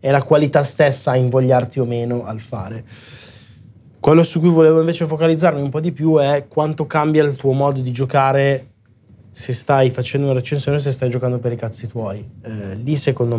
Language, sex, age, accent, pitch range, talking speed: Italian, male, 20-39, native, 120-140 Hz, 195 wpm